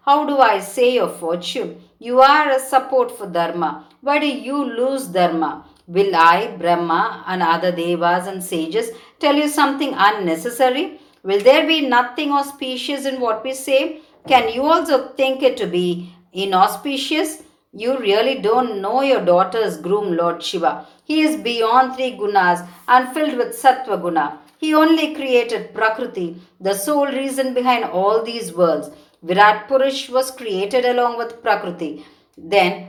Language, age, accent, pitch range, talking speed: Tamil, 50-69, native, 185-265 Hz, 155 wpm